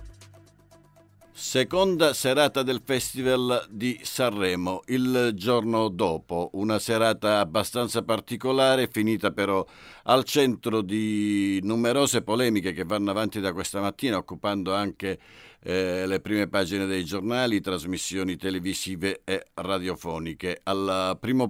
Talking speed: 110 wpm